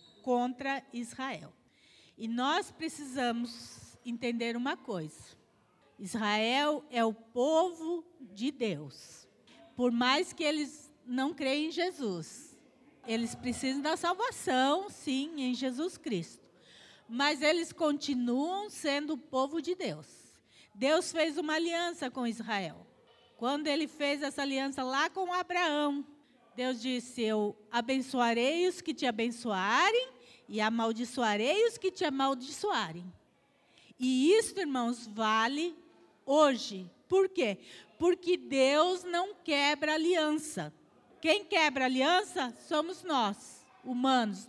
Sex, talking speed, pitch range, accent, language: female, 115 wpm, 240-330 Hz, Brazilian, Portuguese